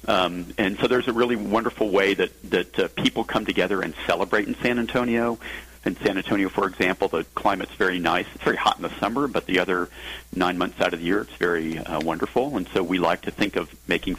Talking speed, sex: 235 wpm, male